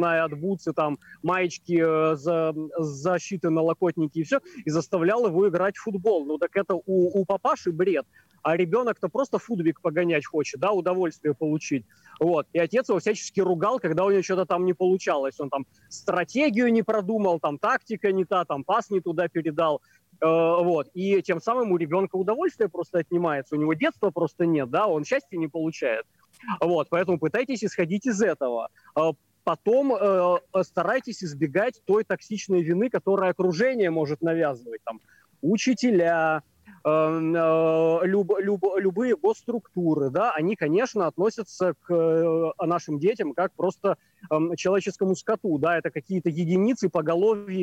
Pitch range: 165-200 Hz